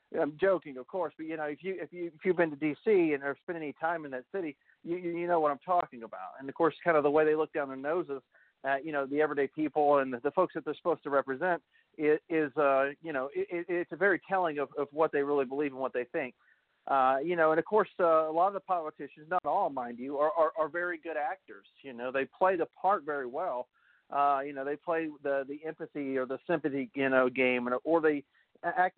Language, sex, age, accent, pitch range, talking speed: English, male, 40-59, American, 140-170 Hz, 265 wpm